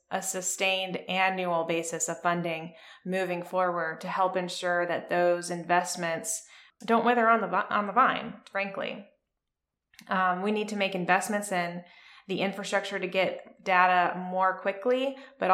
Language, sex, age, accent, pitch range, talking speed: English, female, 20-39, American, 180-200 Hz, 135 wpm